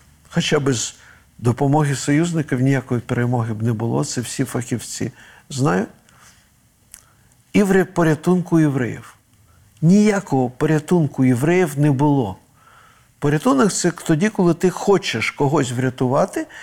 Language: Ukrainian